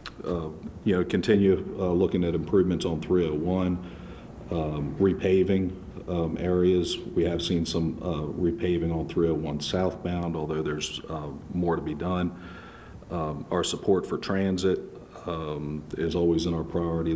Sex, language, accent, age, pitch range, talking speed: male, English, American, 40-59, 80-90 Hz, 145 wpm